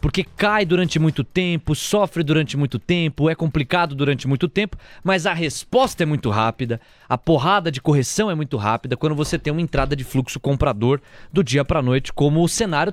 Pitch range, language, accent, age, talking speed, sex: 145-195 Hz, Portuguese, Brazilian, 20-39, 200 wpm, male